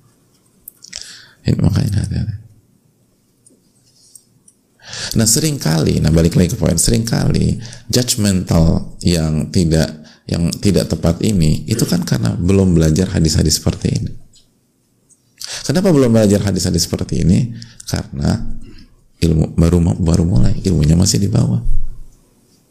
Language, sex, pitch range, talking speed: Indonesian, male, 85-115 Hz, 105 wpm